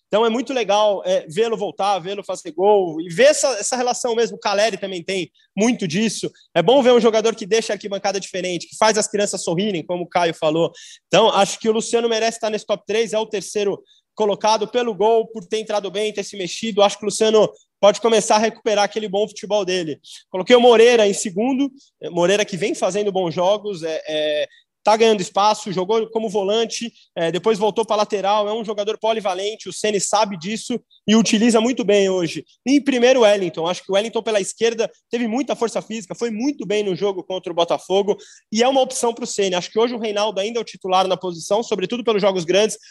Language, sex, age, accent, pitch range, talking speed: Portuguese, male, 20-39, Brazilian, 195-230 Hz, 215 wpm